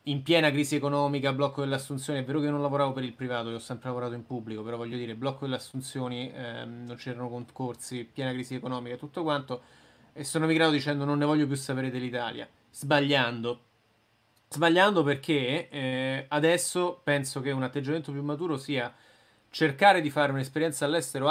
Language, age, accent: Italian, 20-39, native